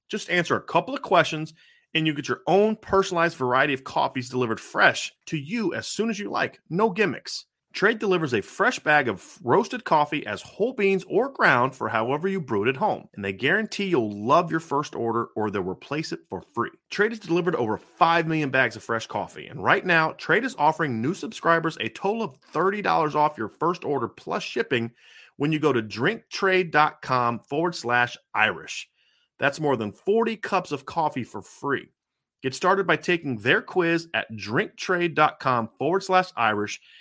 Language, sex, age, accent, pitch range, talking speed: English, male, 30-49, American, 125-190 Hz, 190 wpm